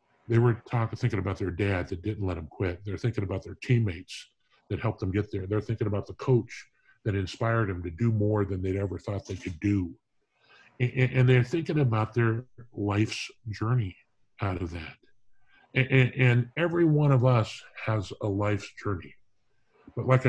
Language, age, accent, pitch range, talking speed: English, 50-69, American, 100-130 Hz, 190 wpm